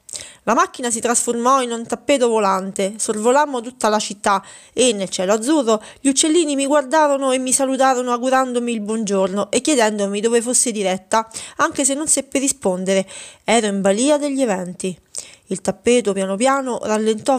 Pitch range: 200-260 Hz